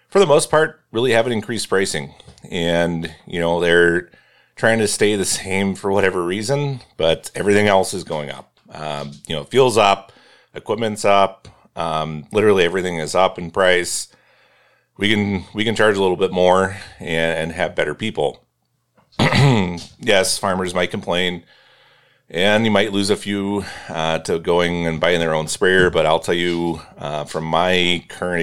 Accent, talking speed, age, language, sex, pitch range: American, 170 wpm, 30-49, English, male, 80-100 Hz